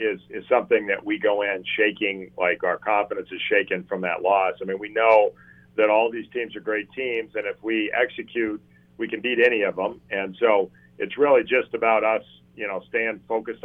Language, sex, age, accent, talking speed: English, male, 40-59, American, 210 wpm